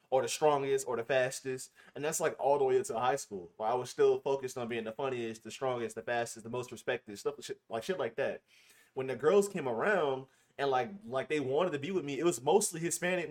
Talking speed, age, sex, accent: 250 wpm, 20-39, male, American